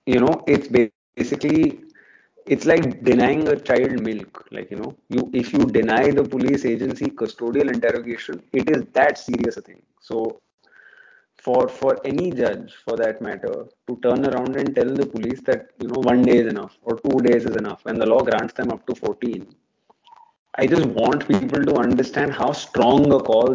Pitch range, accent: 130-160 Hz, Indian